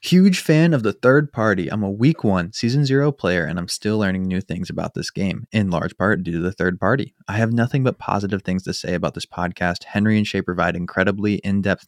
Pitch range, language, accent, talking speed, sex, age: 95-120 Hz, English, American, 235 wpm, male, 20-39